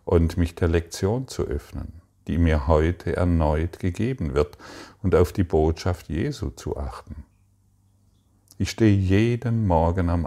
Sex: male